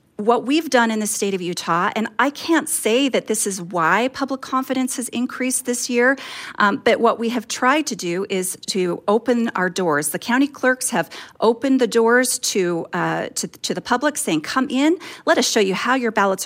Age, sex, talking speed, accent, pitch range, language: 40-59, female, 210 wpm, American, 200-265 Hz, English